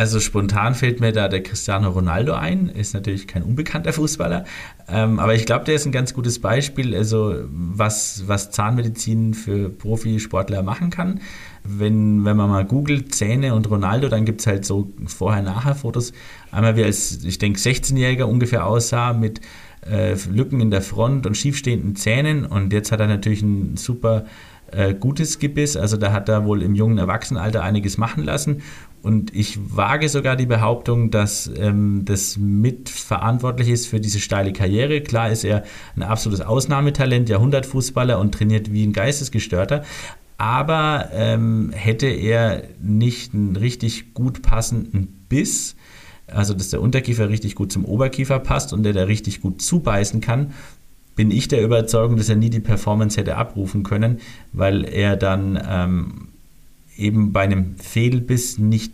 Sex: male